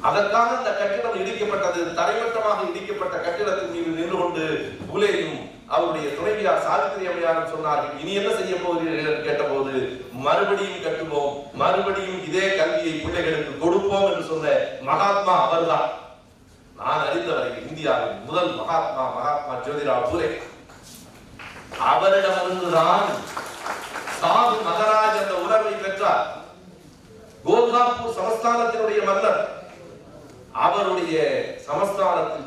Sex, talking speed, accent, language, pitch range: male, 45 wpm, native, Tamil, 155-215 Hz